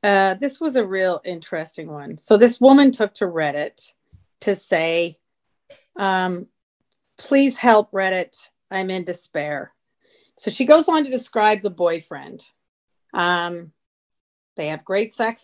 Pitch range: 180-240 Hz